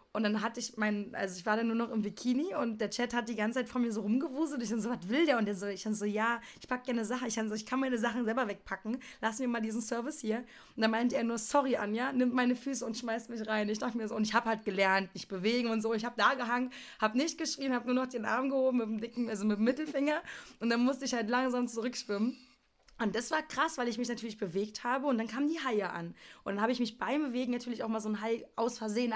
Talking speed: 290 wpm